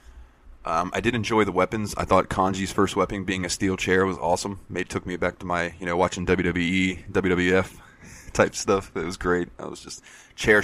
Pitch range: 90-100 Hz